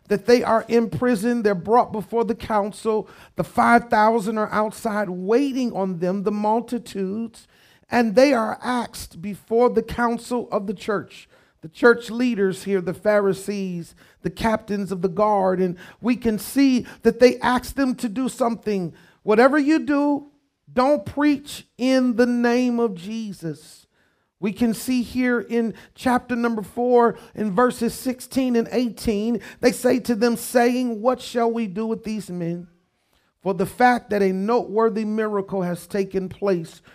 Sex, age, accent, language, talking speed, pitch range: male, 50-69, American, English, 155 wpm, 200-245 Hz